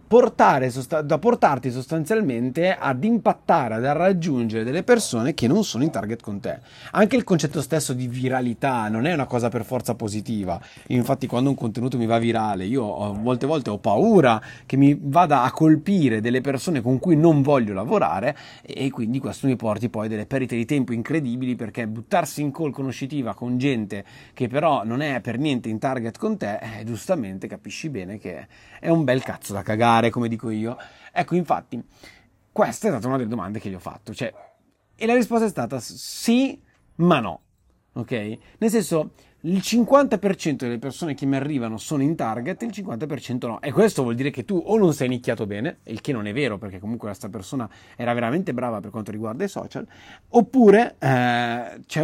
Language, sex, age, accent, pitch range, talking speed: Italian, male, 30-49, native, 115-165 Hz, 190 wpm